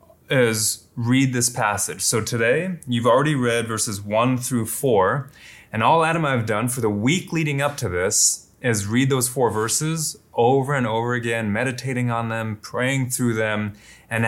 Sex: male